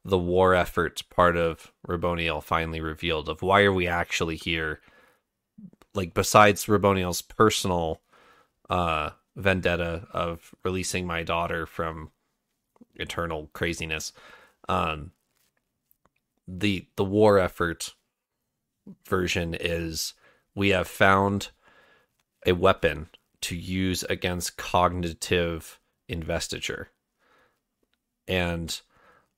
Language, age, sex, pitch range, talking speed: English, 30-49, male, 85-100 Hz, 90 wpm